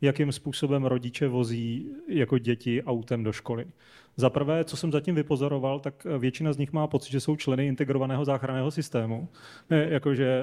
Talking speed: 165 wpm